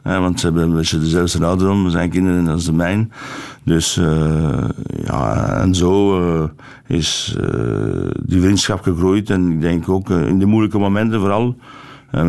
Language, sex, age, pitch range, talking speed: Dutch, male, 60-79, 85-100 Hz, 185 wpm